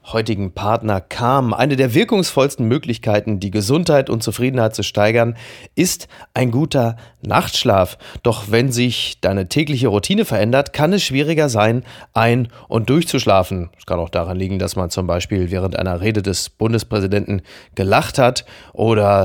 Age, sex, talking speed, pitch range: 30-49, male, 150 wpm, 100-135 Hz